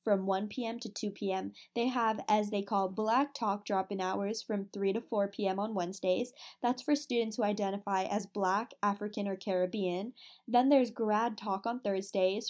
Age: 10-29